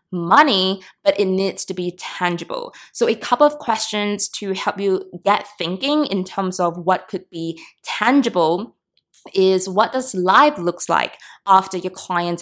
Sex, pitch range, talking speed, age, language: female, 175-210 Hz, 160 wpm, 20-39, English